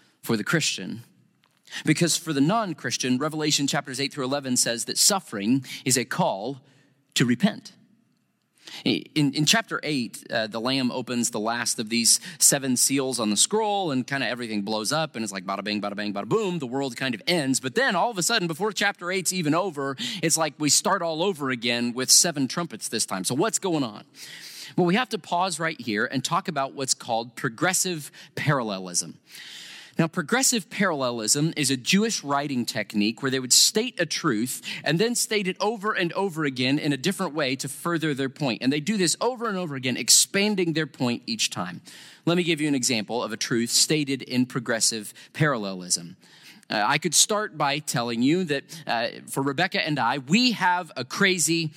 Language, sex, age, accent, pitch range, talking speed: English, male, 30-49, American, 130-180 Hz, 195 wpm